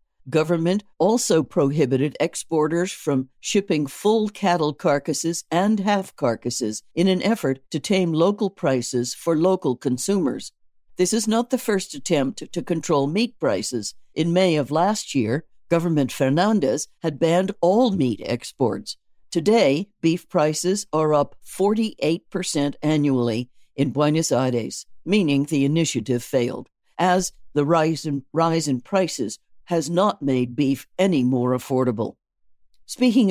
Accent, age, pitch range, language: American, 60-79, 140-185 Hz, English